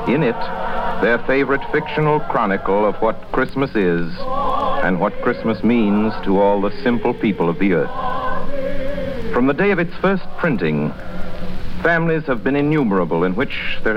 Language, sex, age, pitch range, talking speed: English, male, 60-79, 115-170 Hz, 155 wpm